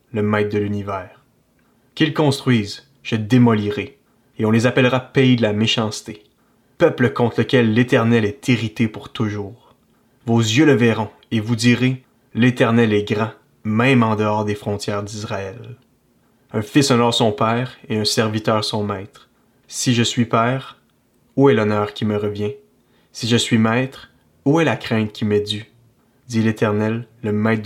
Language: French